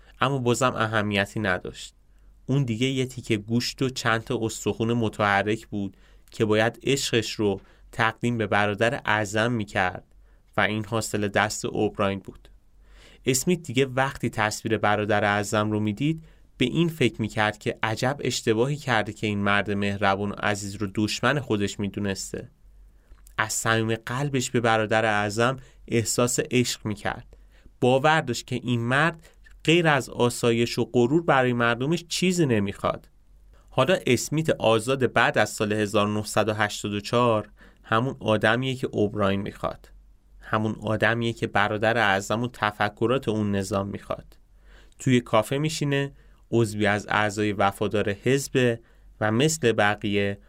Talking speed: 130 wpm